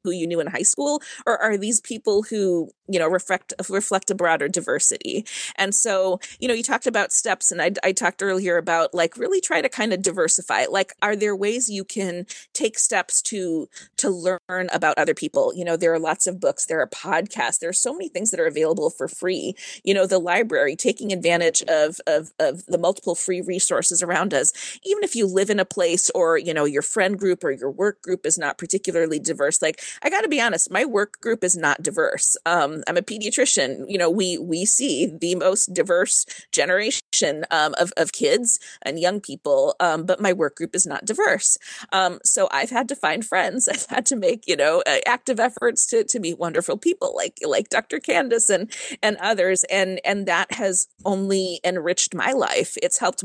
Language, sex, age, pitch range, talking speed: English, female, 30-49, 175-235 Hz, 210 wpm